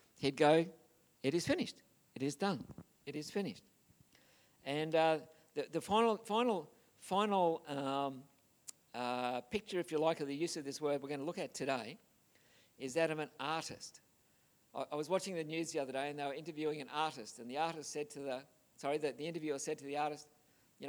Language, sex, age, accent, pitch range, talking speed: English, male, 50-69, Australian, 145-190 Hz, 205 wpm